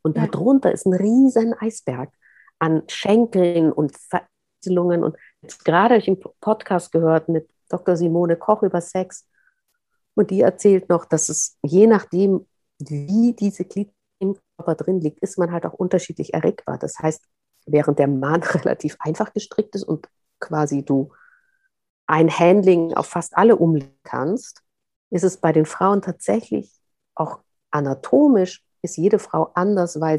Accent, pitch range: German, 155-205 Hz